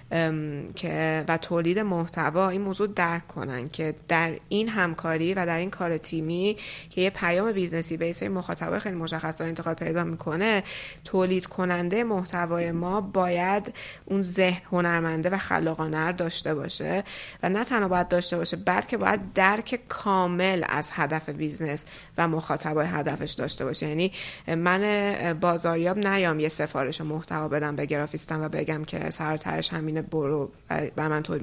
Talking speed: 150 wpm